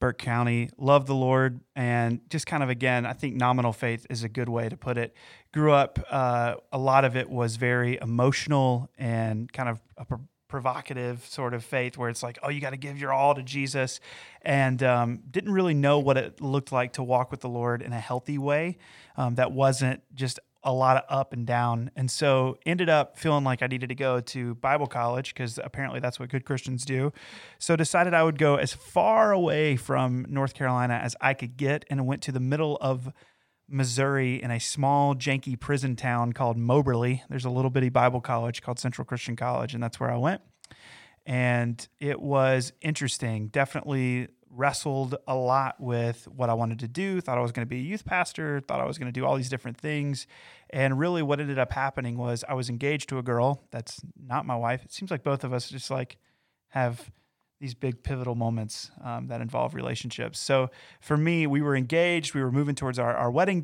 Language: English